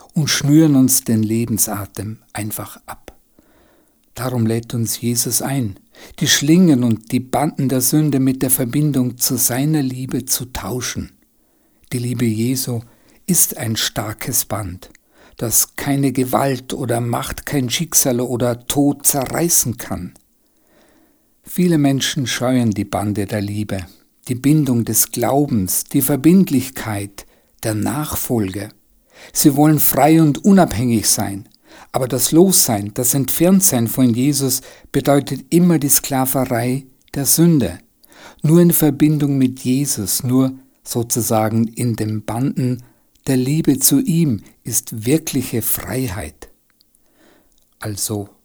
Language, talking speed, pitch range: German, 120 wpm, 115-145 Hz